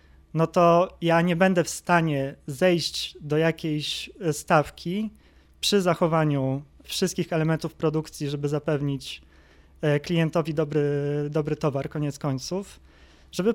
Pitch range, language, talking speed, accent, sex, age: 145-180 Hz, Polish, 110 wpm, native, male, 20-39